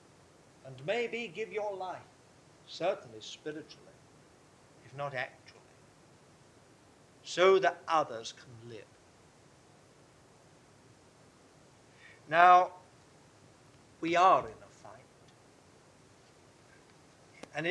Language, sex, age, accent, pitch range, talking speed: English, male, 50-69, British, 145-225 Hz, 75 wpm